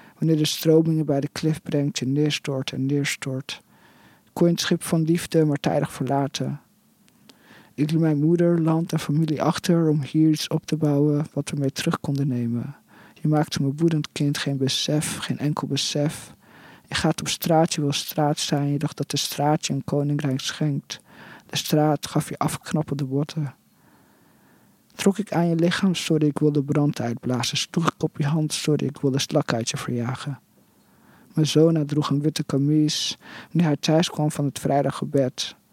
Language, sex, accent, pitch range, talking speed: Dutch, male, Dutch, 140-155 Hz, 180 wpm